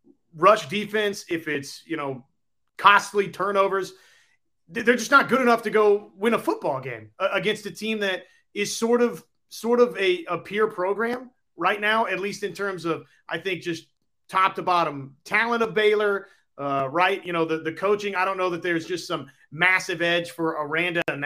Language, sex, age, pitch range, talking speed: English, male, 30-49, 165-205 Hz, 190 wpm